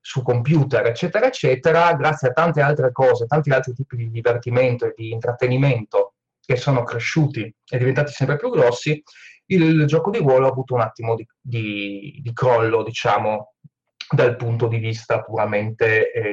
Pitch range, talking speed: 115-150 Hz, 160 wpm